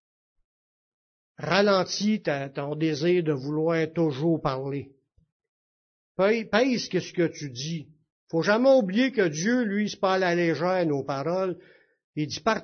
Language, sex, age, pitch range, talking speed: French, male, 60-79, 155-205 Hz, 135 wpm